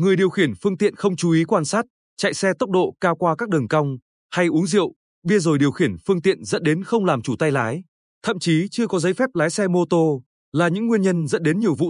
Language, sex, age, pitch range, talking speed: Vietnamese, male, 20-39, 150-195 Hz, 265 wpm